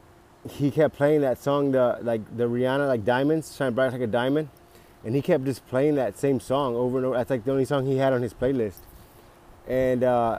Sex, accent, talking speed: male, American, 225 wpm